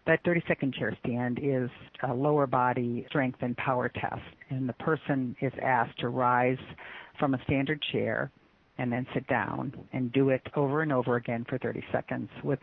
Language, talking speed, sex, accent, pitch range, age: English, 180 wpm, female, American, 125-140 Hz, 50-69